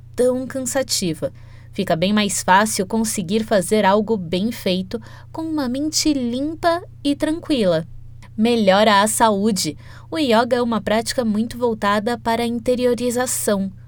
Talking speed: 130 wpm